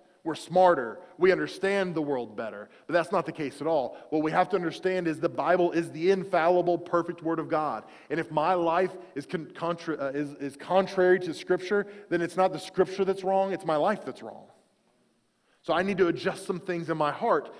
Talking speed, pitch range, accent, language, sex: 200 wpm, 160-195 Hz, American, English, male